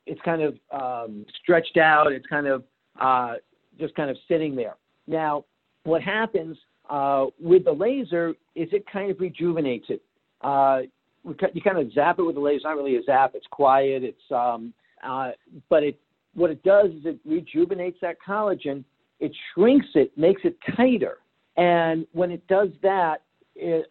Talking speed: 175 wpm